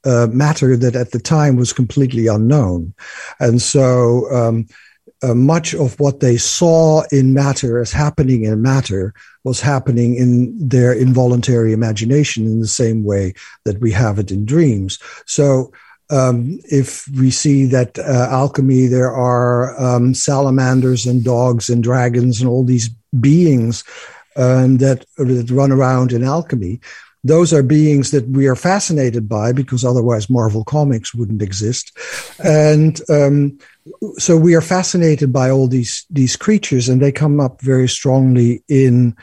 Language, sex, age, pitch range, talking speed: English, male, 60-79, 120-145 Hz, 150 wpm